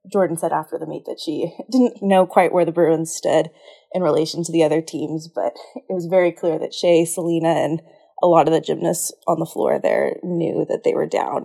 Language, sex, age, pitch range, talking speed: English, female, 20-39, 165-190 Hz, 225 wpm